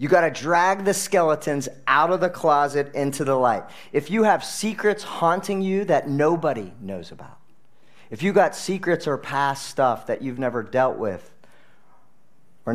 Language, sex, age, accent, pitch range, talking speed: English, male, 40-59, American, 105-140 Hz, 170 wpm